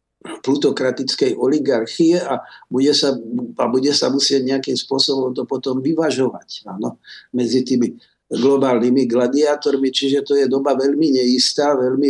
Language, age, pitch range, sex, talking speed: Slovak, 50-69, 130-170 Hz, male, 130 wpm